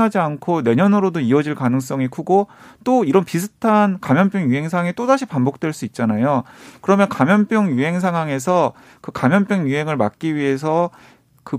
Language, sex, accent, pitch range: Korean, male, native, 135-205 Hz